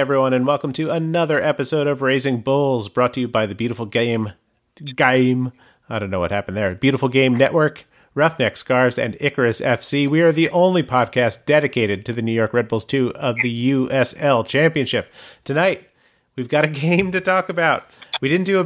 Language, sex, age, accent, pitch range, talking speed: English, male, 30-49, American, 120-155 Hz, 195 wpm